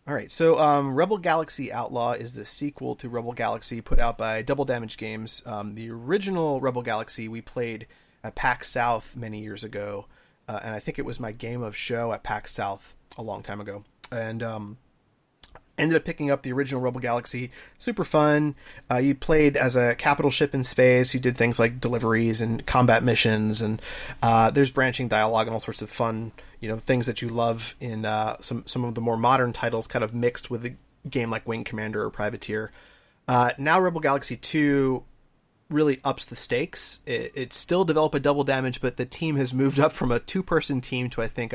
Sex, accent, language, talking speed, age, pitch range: male, American, English, 205 wpm, 30-49, 115-140 Hz